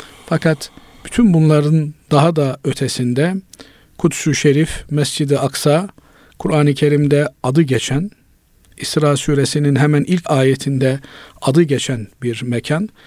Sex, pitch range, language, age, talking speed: male, 130-155 Hz, Turkish, 50-69, 105 wpm